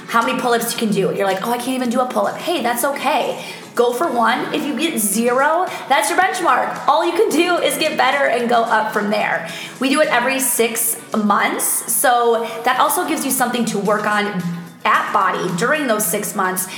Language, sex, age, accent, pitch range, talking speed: English, female, 20-39, American, 210-270 Hz, 220 wpm